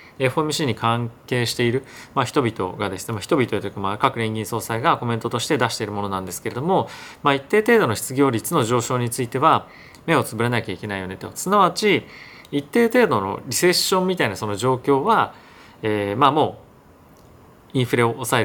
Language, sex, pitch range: Japanese, male, 110-145 Hz